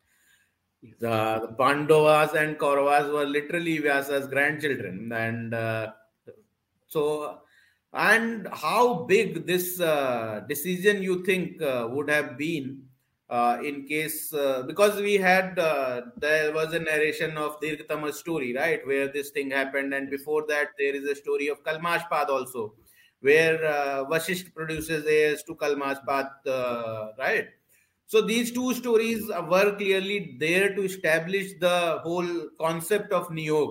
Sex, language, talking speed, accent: male, Hindi, 135 wpm, native